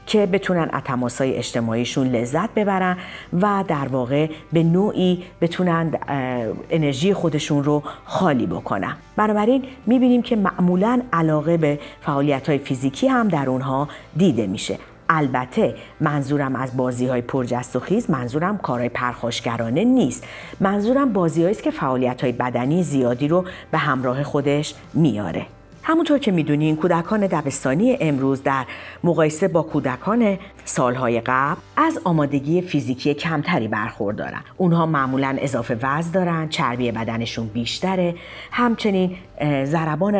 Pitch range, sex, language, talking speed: 130-190 Hz, female, Persian, 125 wpm